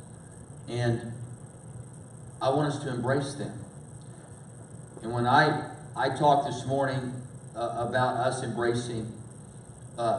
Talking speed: 110 wpm